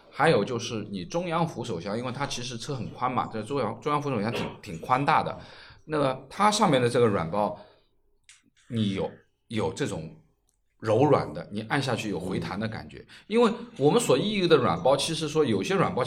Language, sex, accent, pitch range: Chinese, male, native, 110-155 Hz